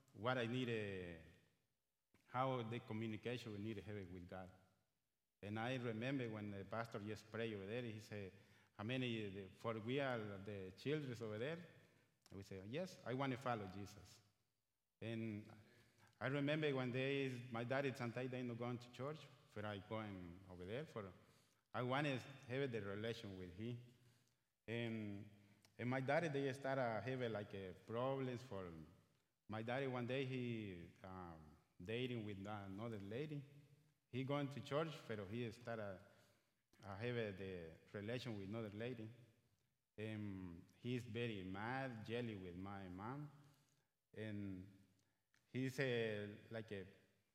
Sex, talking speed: male, 150 wpm